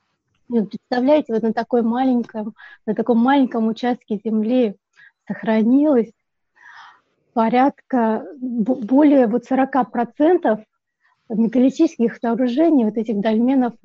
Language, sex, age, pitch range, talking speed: Russian, female, 20-39, 220-245 Hz, 75 wpm